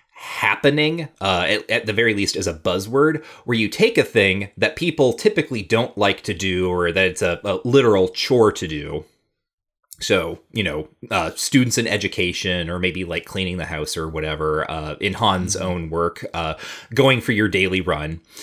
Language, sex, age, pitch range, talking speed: English, male, 30-49, 90-115 Hz, 185 wpm